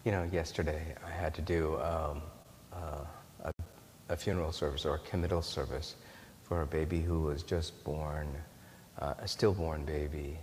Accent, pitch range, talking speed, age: American, 80-95 Hz, 160 wpm, 40-59